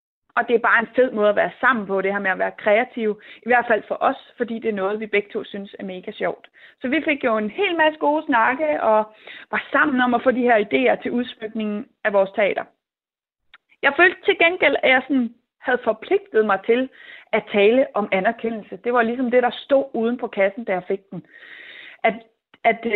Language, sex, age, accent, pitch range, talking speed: Danish, female, 30-49, native, 195-250 Hz, 225 wpm